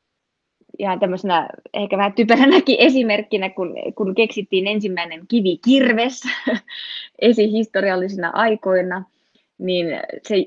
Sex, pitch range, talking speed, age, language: female, 165-210 Hz, 75 wpm, 20-39, Finnish